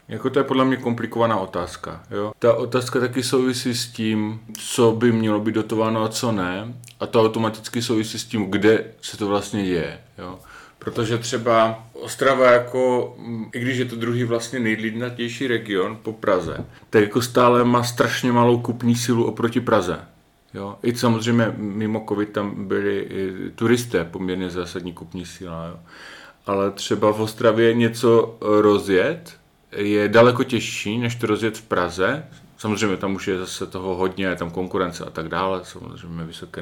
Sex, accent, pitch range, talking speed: male, native, 100-120 Hz, 160 wpm